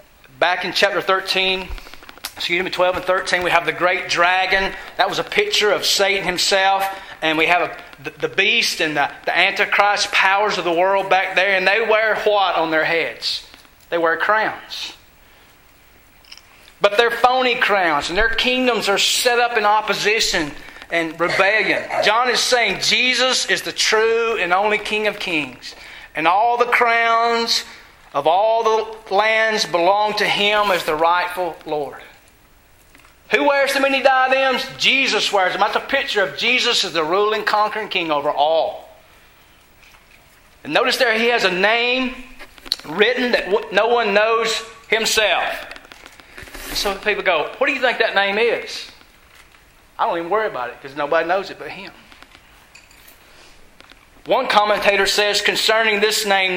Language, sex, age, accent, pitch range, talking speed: English, male, 40-59, American, 185-230 Hz, 155 wpm